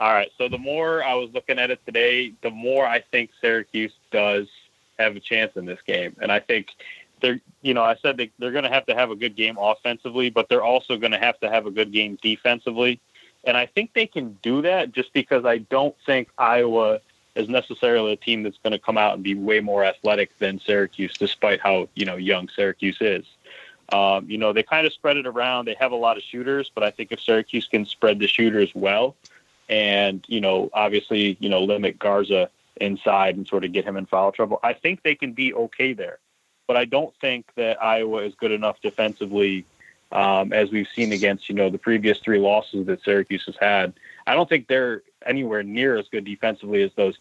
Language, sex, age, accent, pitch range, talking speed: English, male, 20-39, American, 100-125 Hz, 220 wpm